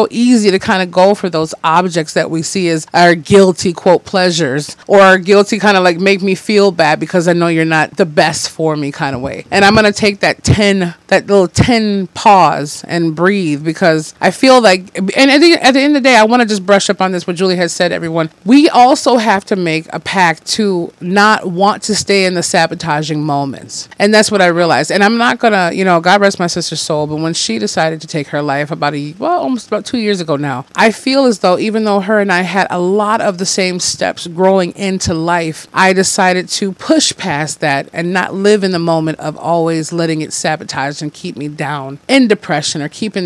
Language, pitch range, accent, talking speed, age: English, 170-210 Hz, American, 235 wpm, 30-49